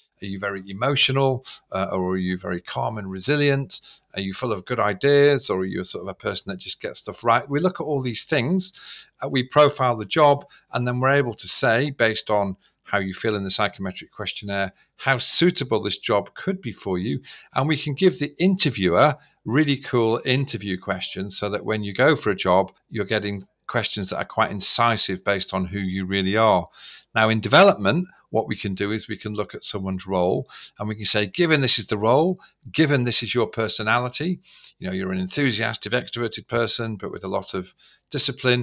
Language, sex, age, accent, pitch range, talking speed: English, male, 40-59, British, 100-140 Hz, 215 wpm